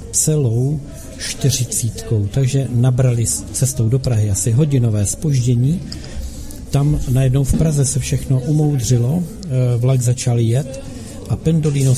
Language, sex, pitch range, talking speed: Czech, male, 115-135 Hz, 110 wpm